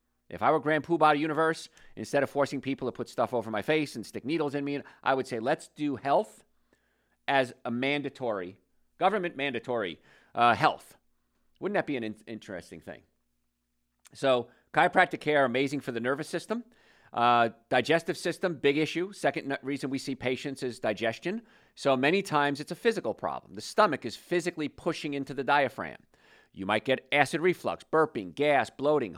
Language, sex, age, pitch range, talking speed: English, male, 40-59, 115-150 Hz, 170 wpm